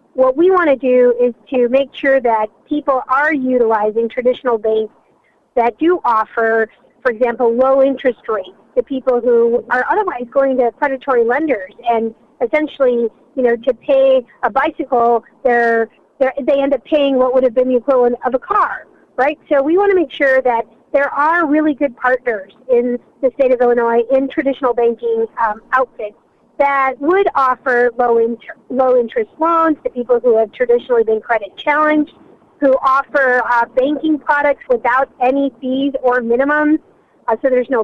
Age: 40-59